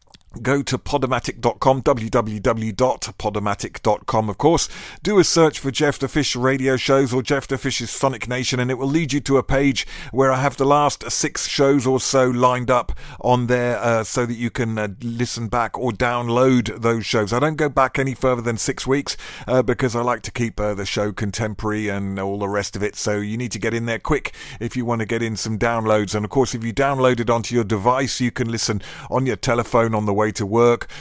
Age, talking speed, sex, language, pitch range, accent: 40-59, 220 wpm, male, English, 110-135 Hz, British